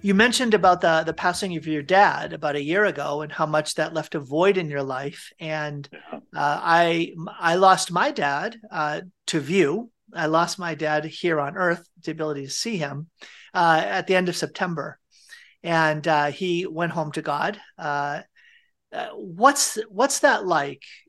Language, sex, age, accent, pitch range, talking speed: English, male, 40-59, American, 155-190 Hz, 175 wpm